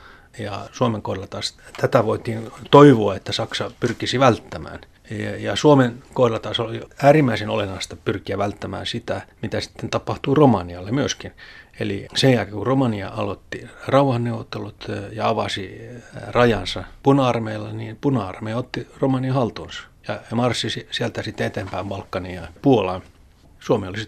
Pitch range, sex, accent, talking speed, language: 100-120 Hz, male, native, 130 wpm, Finnish